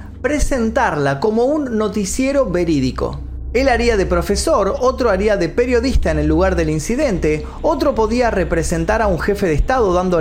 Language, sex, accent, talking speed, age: Spanish, male, Argentinian, 160 wpm, 30-49